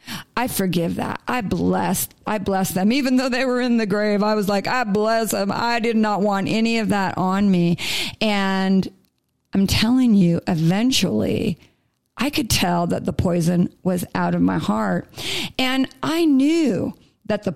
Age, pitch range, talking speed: 40-59, 180-220 Hz, 175 wpm